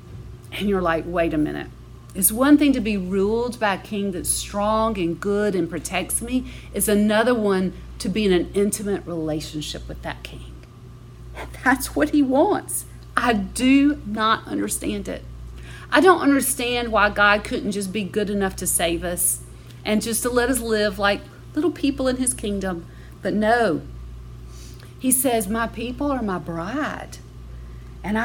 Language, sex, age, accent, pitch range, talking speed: English, female, 40-59, American, 155-235 Hz, 165 wpm